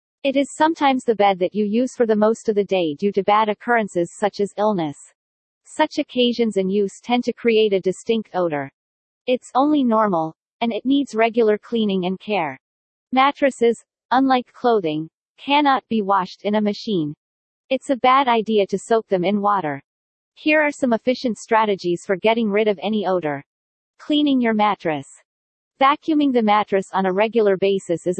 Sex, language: female, English